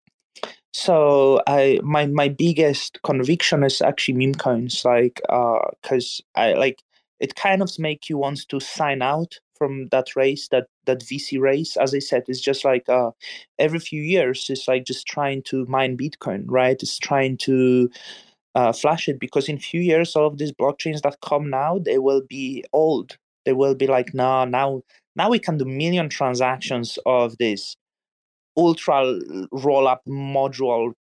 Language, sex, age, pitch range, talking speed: English, male, 20-39, 130-150 Hz, 170 wpm